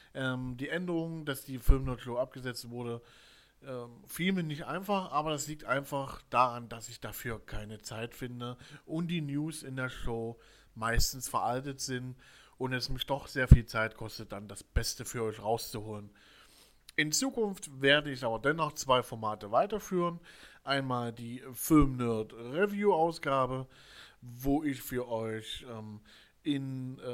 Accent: German